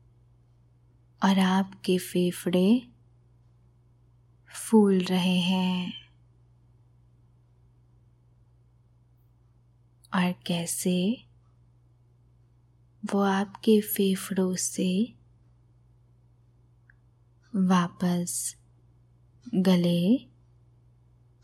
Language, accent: Hindi, native